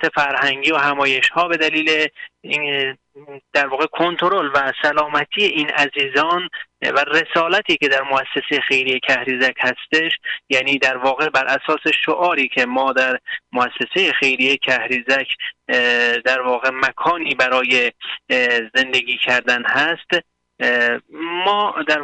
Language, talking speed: Persian, 115 wpm